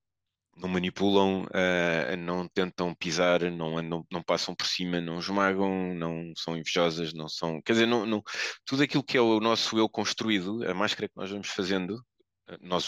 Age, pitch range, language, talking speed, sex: 20-39, 90-115 Hz, Portuguese, 155 wpm, male